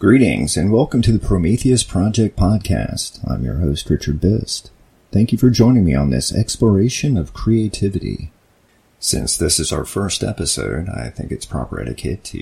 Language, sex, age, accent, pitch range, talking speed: English, male, 40-59, American, 70-100 Hz, 165 wpm